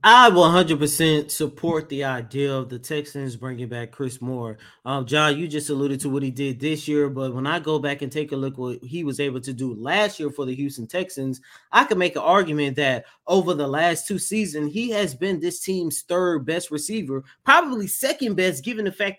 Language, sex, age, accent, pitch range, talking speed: English, male, 20-39, American, 145-210 Hz, 220 wpm